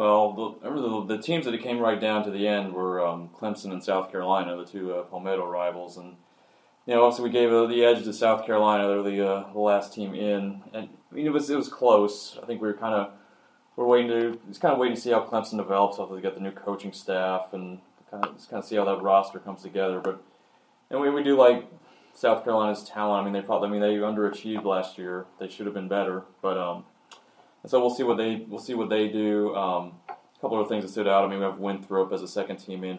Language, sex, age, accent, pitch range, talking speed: English, male, 20-39, American, 95-110 Hz, 260 wpm